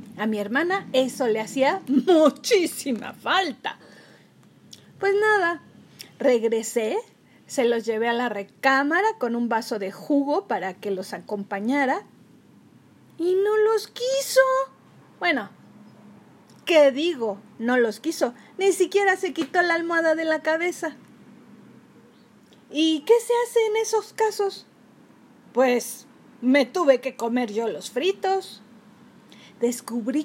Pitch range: 235-350 Hz